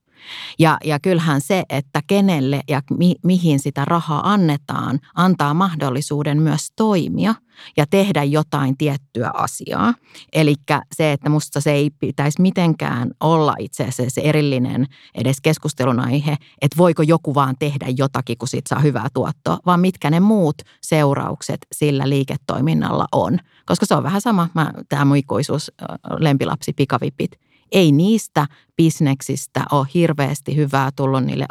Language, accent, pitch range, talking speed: Finnish, native, 135-170 Hz, 135 wpm